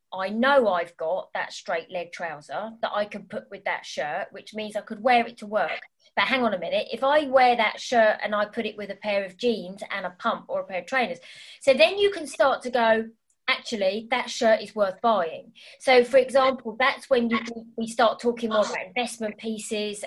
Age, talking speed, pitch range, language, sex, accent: 20-39, 225 wpm, 205-260 Hz, English, female, British